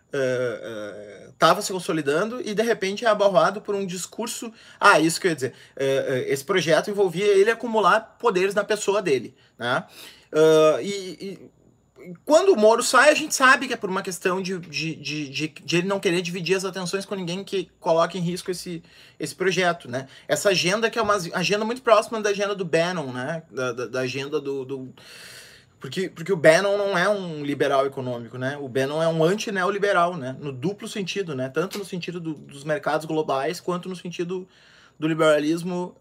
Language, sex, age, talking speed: Portuguese, male, 20-39, 195 wpm